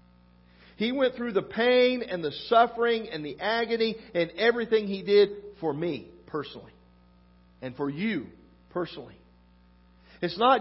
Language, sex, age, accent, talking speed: English, male, 50-69, American, 135 wpm